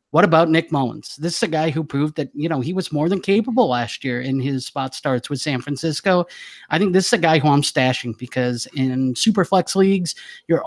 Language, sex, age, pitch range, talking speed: English, male, 30-49, 130-165 Hz, 235 wpm